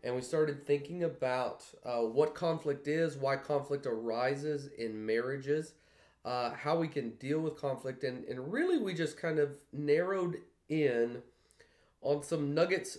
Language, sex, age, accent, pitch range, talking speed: English, male, 30-49, American, 120-150 Hz, 155 wpm